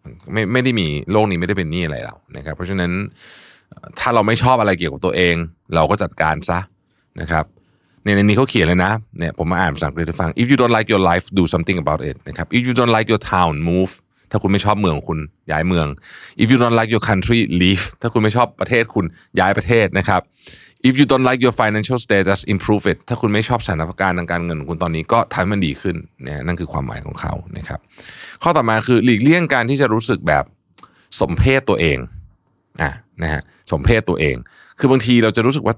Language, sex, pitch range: Thai, male, 85-115 Hz